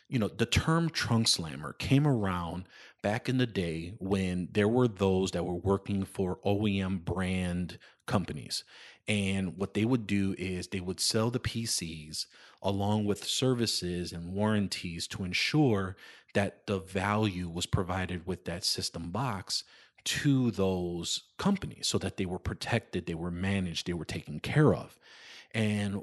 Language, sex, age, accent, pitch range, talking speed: English, male, 30-49, American, 90-110 Hz, 155 wpm